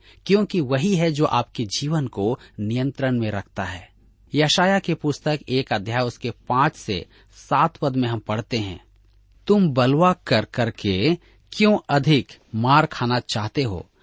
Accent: native